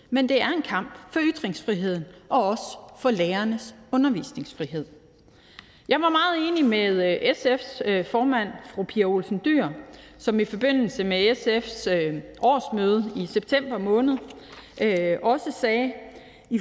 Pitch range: 190-255 Hz